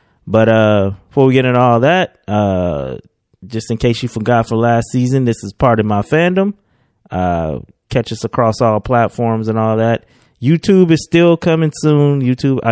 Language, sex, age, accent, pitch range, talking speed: English, male, 20-39, American, 100-125 Hz, 180 wpm